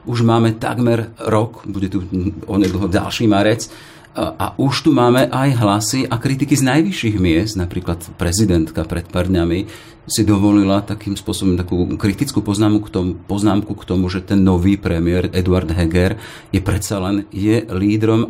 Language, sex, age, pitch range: Slovak, male, 40-59, 95-110 Hz